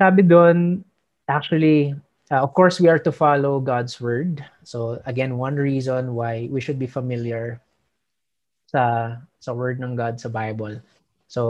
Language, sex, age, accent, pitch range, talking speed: Filipino, male, 20-39, native, 125-160 Hz, 145 wpm